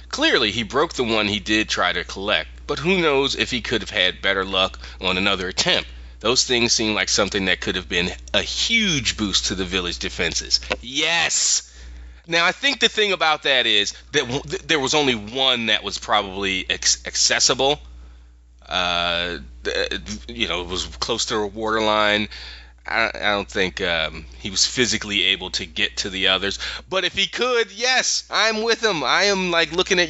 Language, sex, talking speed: English, male, 185 wpm